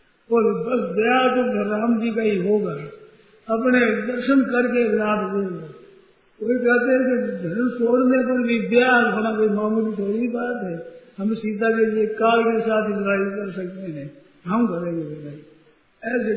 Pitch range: 215-250 Hz